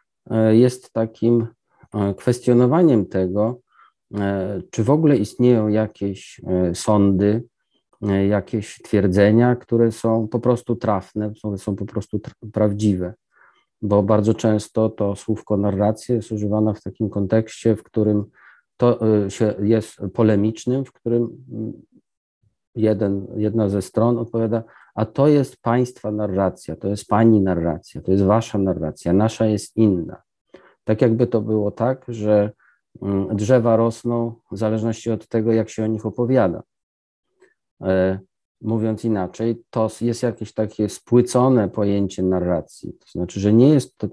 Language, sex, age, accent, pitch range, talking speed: Polish, male, 40-59, native, 100-115 Hz, 130 wpm